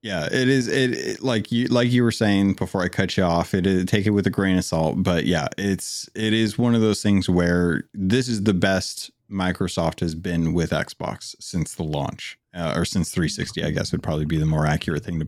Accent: American